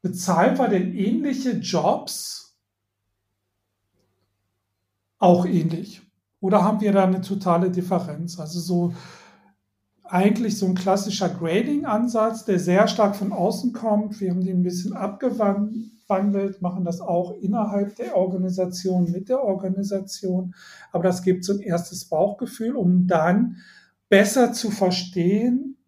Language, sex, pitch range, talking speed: German, male, 175-205 Hz, 125 wpm